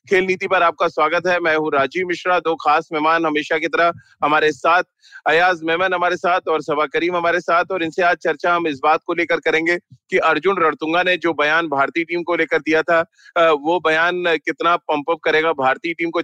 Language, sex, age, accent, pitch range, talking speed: Hindi, male, 30-49, native, 155-180 Hz, 210 wpm